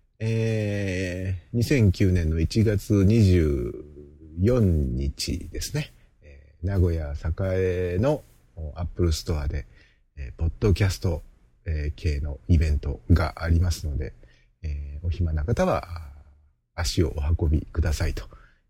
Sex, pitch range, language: male, 80-100 Hz, Japanese